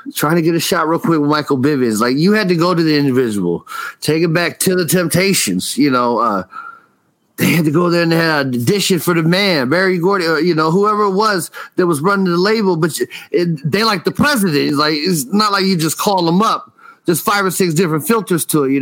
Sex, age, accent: male, 40-59, American